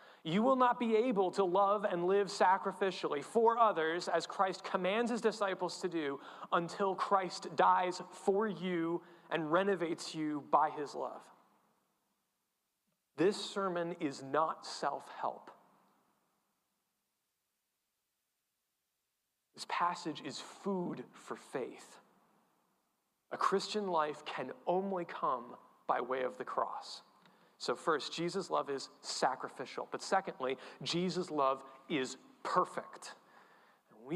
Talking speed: 115 wpm